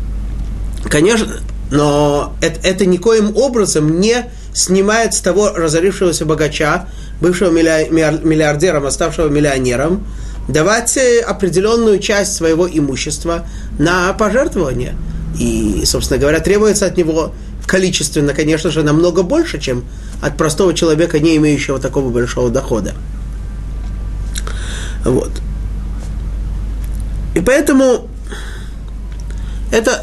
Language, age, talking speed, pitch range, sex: Russian, 30-49, 100 wpm, 145-190 Hz, male